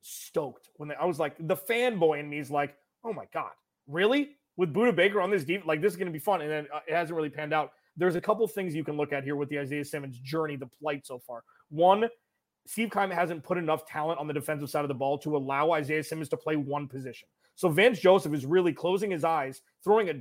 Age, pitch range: 30-49, 155-205 Hz